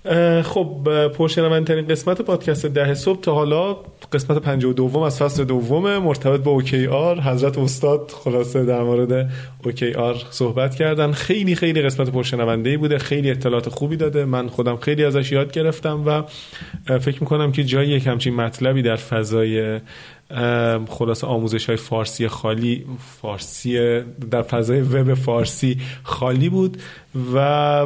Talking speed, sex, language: 140 wpm, male, Persian